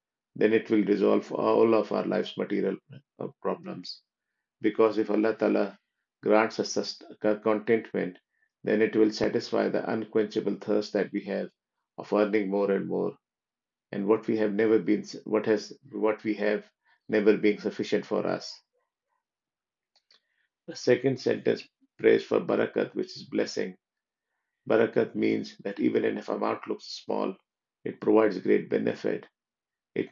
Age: 50-69